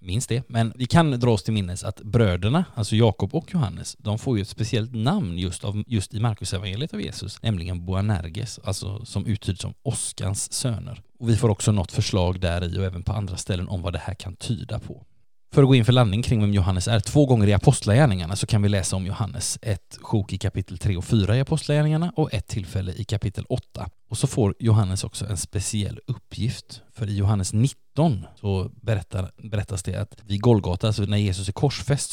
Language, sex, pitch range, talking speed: Swedish, male, 100-120 Hz, 215 wpm